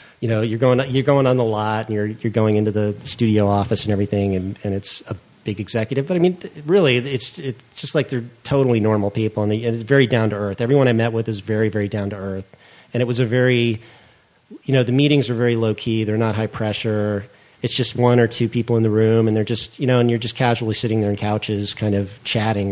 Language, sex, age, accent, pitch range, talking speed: English, male, 40-59, American, 105-125 Hz, 255 wpm